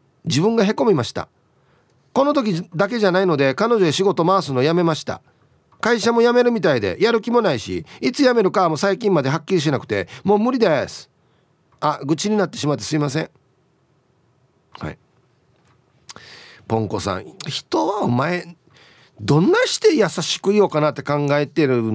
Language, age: Japanese, 40-59